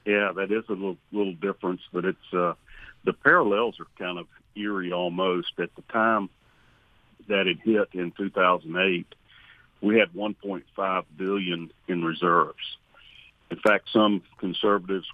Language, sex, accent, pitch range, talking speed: English, male, American, 85-105 Hz, 140 wpm